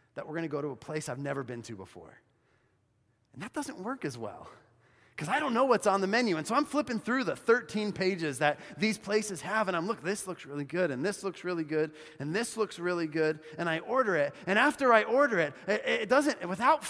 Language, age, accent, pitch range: English, 30-49, American, 140-215 Hz